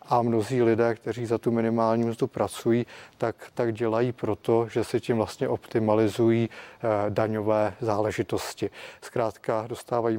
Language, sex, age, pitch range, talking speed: Czech, male, 30-49, 110-125 Hz, 135 wpm